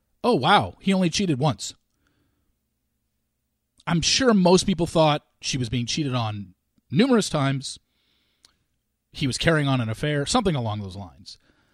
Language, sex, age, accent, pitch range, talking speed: English, male, 40-59, American, 120-185 Hz, 145 wpm